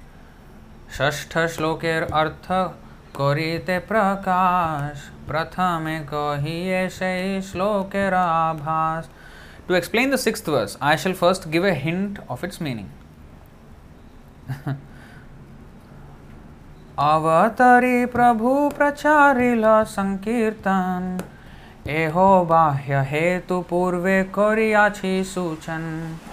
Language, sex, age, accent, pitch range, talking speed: English, male, 20-39, Indian, 130-185 Hz, 80 wpm